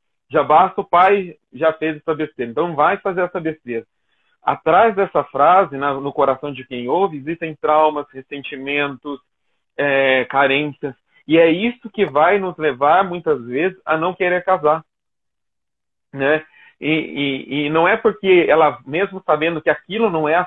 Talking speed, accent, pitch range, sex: 160 wpm, Brazilian, 135-175 Hz, male